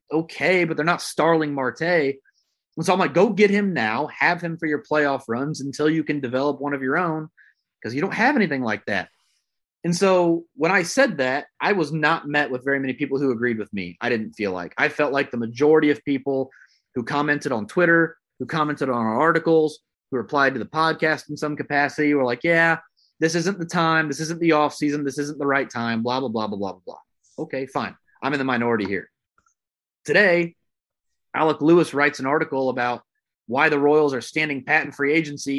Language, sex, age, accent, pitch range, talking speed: English, male, 30-49, American, 135-170 Hz, 210 wpm